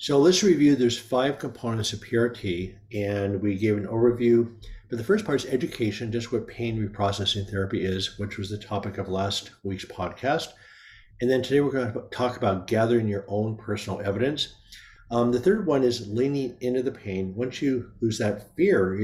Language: English